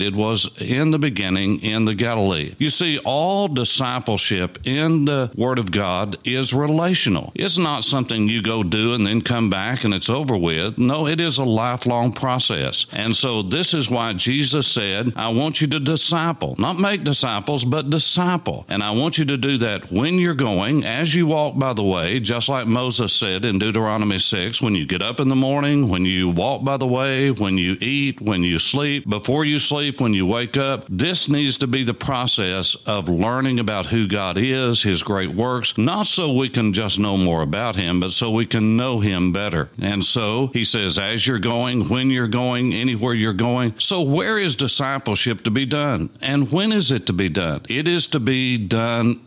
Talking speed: 205 wpm